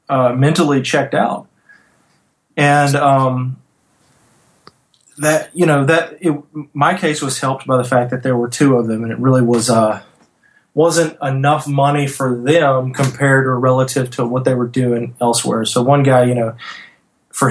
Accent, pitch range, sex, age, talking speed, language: American, 120-145 Hz, male, 30-49, 170 wpm, English